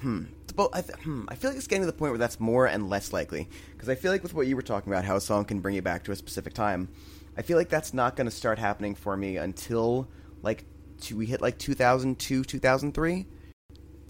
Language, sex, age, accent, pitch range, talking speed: English, male, 20-39, American, 85-115 Hz, 250 wpm